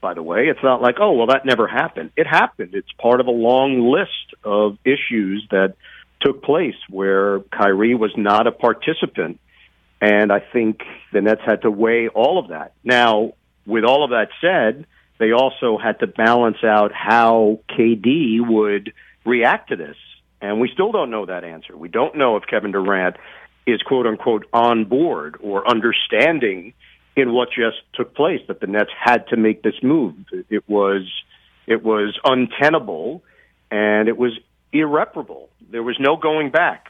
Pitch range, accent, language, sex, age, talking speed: 105-125 Hz, American, English, male, 50-69, 170 wpm